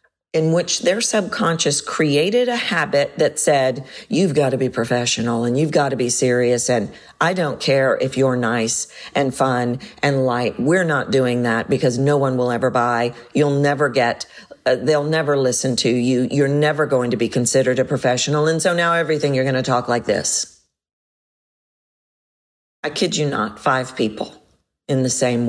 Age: 50-69